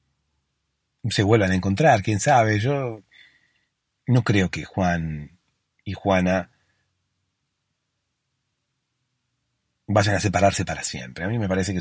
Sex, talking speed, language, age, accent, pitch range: male, 115 wpm, Spanish, 40-59, Argentinian, 95-115 Hz